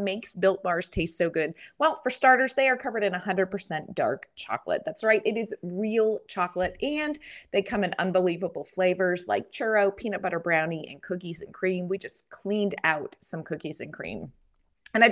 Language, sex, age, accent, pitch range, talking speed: English, female, 30-49, American, 170-240 Hz, 185 wpm